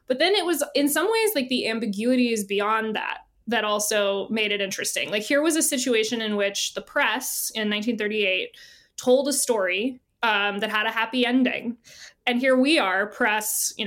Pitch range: 205-255 Hz